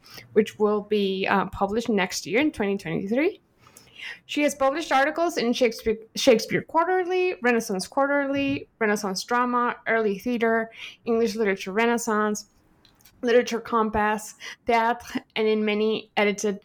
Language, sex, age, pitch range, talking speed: English, female, 20-39, 225-295 Hz, 120 wpm